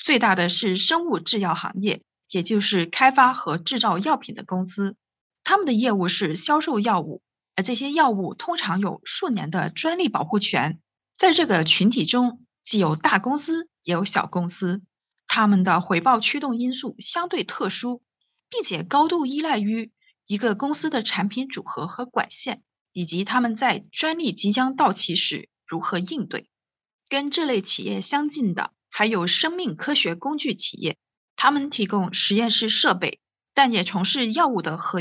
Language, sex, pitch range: Chinese, female, 190-265 Hz